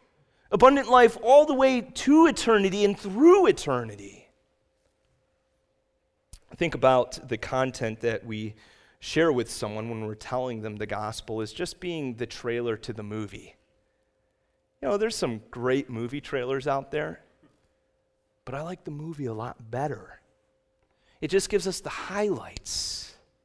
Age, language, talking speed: 30-49, English, 145 wpm